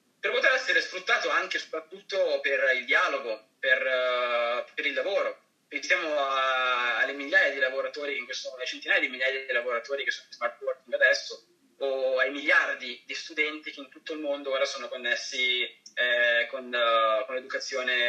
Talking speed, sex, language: 175 wpm, male, Italian